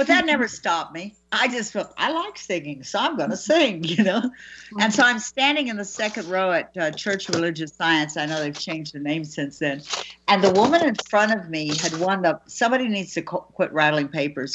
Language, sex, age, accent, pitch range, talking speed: English, female, 60-79, American, 165-245 Hz, 230 wpm